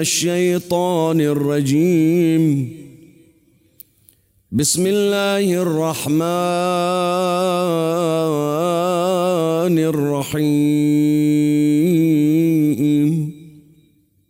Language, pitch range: Arabic, 145-180 Hz